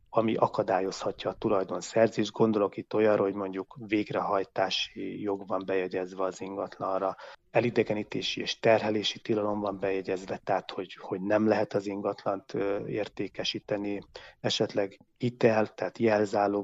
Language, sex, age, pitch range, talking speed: Hungarian, male, 30-49, 100-120 Hz, 115 wpm